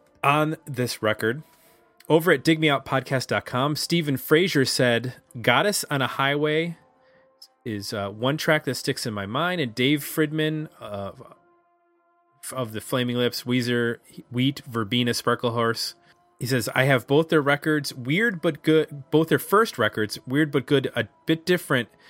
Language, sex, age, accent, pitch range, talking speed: English, male, 30-49, American, 115-150 Hz, 150 wpm